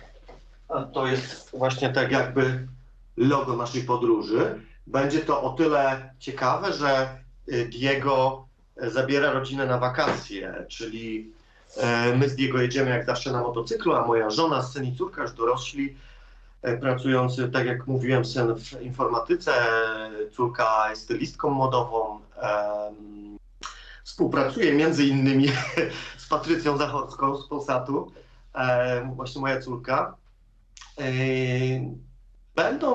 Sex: male